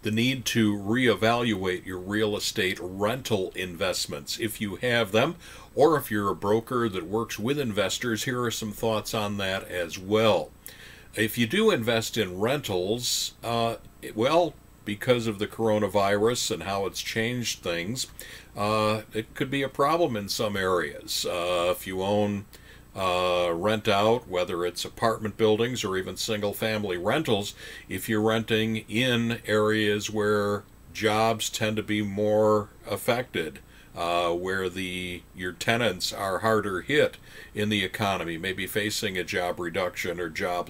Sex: male